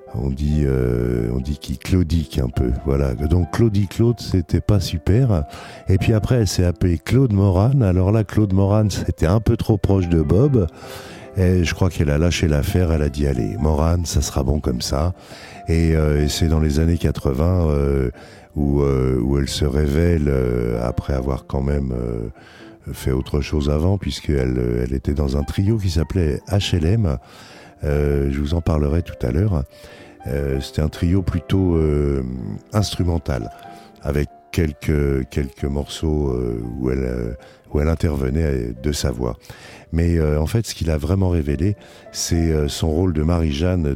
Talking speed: 175 wpm